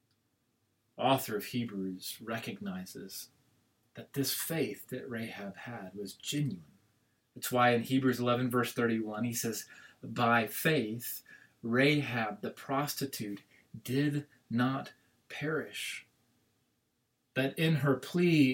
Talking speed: 105 wpm